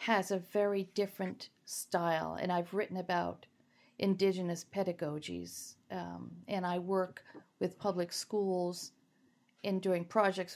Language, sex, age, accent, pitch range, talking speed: English, female, 50-69, American, 180-205 Hz, 120 wpm